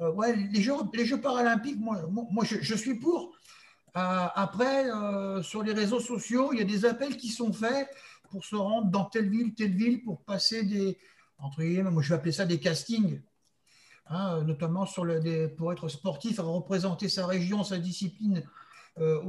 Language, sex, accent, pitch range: French, male, French, 180-230 Hz